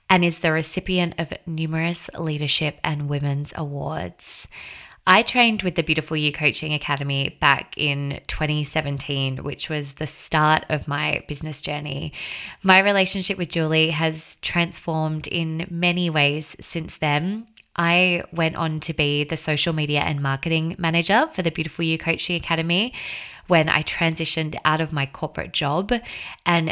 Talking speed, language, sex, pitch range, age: 150 wpm, English, female, 145-170 Hz, 20-39